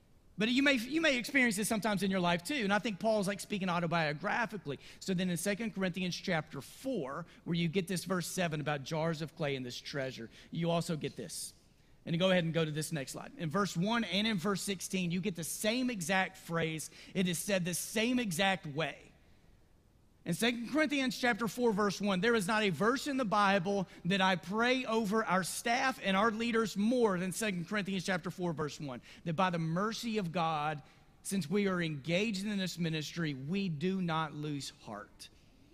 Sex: male